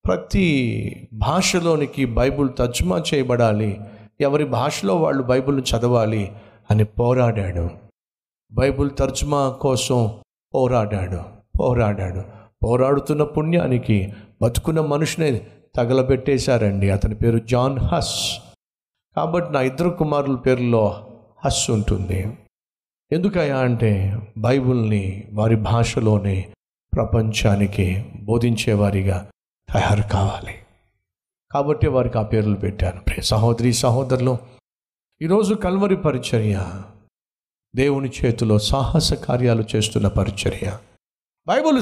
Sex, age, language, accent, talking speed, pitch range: male, 50-69, Telugu, native, 85 wpm, 105-135 Hz